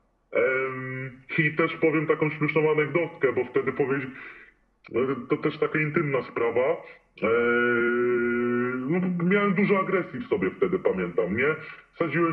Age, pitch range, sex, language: 20-39, 145-185 Hz, female, Polish